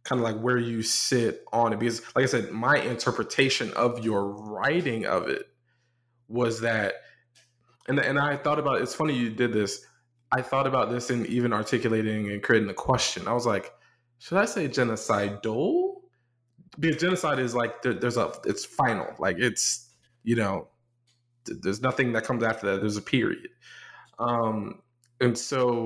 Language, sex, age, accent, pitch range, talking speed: English, male, 20-39, American, 115-135 Hz, 175 wpm